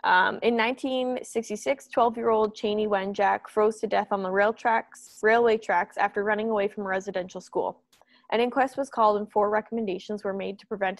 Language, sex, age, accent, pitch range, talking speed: English, female, 20-39, American, 195-230 Hz, 170 wpm